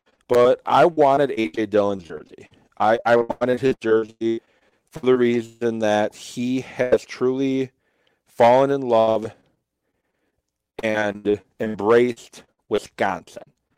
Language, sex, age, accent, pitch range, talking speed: English, male, 40-59, American, 105-125 Hz, 105 wpm